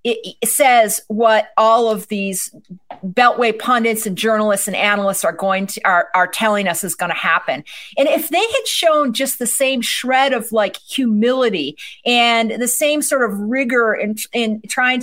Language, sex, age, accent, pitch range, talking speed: English, female, 40-59, American, 215-290 Hz, 180 wpm